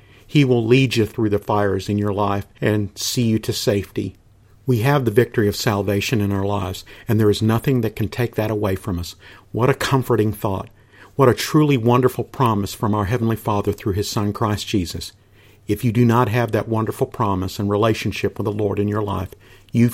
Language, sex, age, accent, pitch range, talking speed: English, male, 50-69, American, 100-120 Hz, 210 wpm